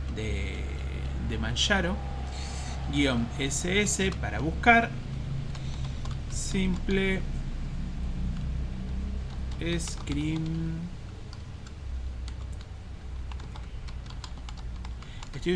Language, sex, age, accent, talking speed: Spanish, male, 30-49, Argentinian, 40 wpm